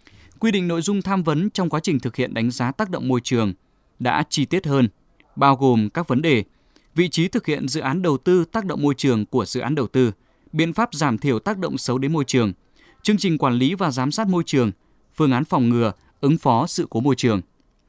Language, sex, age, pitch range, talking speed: Vietnamese, male, 20-39, 120-170 Hz, 240 wpm